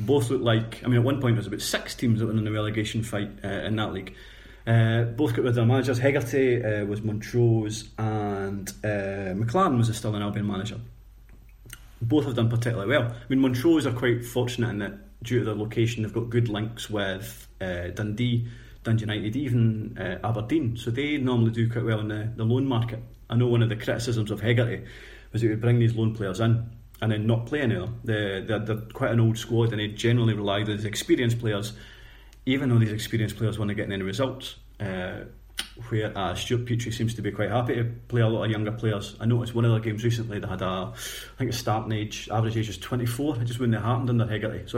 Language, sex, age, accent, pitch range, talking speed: English, male, 30-49, British, 105-120 Hz, 225 wpm